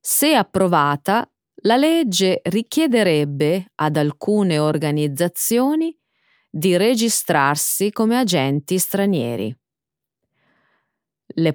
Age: 30-49